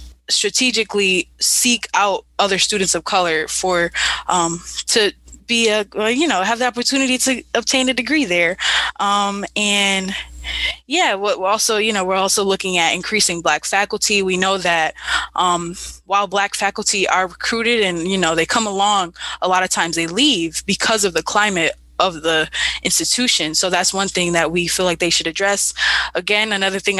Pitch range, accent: 180-210 Hz, American